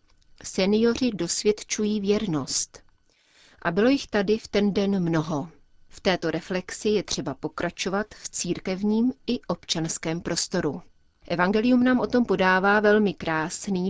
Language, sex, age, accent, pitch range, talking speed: Czech, female, 30-49, native, 175-210 Hz, 125 wpm